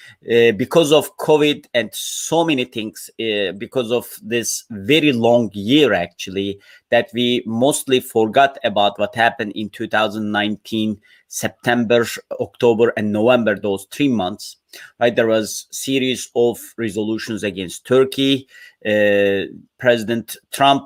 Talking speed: 125 wpm